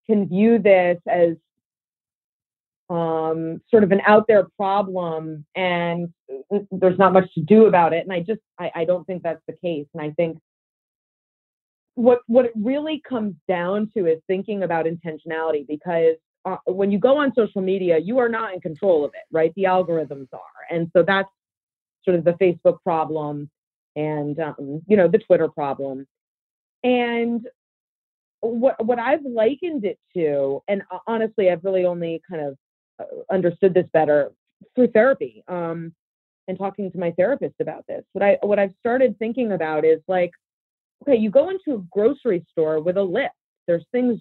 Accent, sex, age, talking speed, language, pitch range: American, female, 30-49, 170 wpm, English, 165-230 Hz